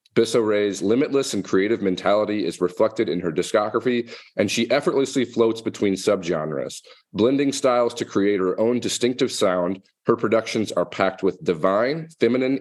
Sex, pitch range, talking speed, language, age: male, 95-130 Hz, 150 wpm, English, 40-59